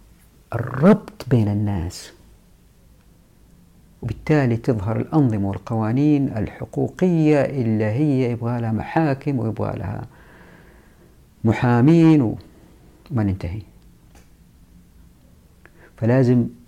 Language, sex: Arabic, female